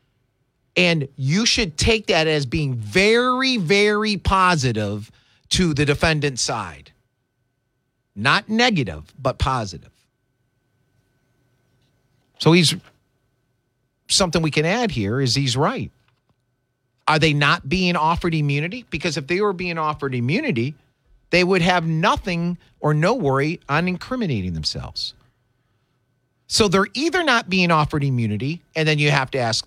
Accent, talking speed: American, 130 wpm